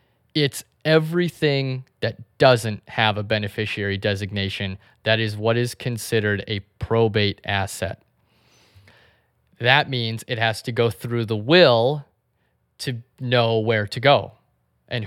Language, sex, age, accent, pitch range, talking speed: English, male, 20-39, American, 110-125 Hz, 125 wpm